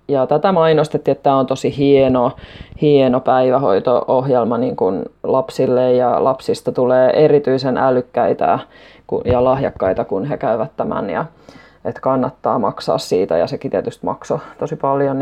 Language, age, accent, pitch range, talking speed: Finnish, 20-39, native, 135-180 Hz, 140 wpm